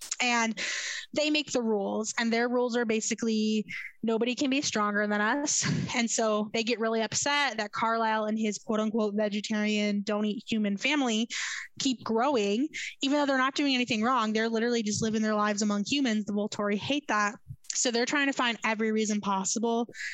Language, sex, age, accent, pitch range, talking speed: English, female, 20-39, American, 210-250 Hz, 175 wpm